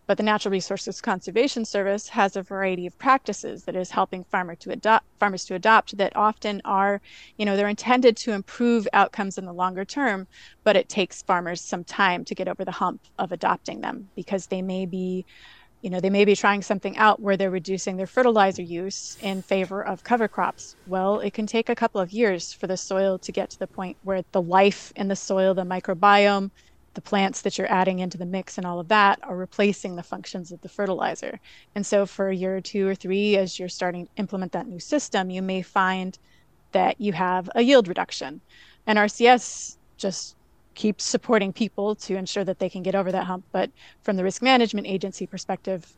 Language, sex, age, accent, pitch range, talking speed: English, female, 30-49, American, 185-210 Hz, 205 wpm